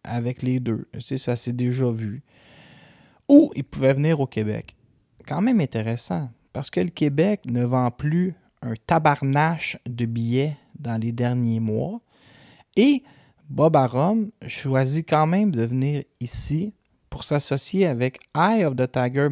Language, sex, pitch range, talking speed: French, male, 120-160 Hz, 150 wpm